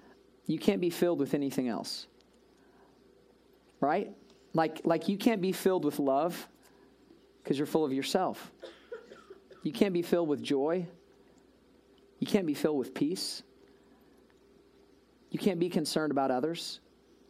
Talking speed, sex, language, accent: 135 wpm, male, English, American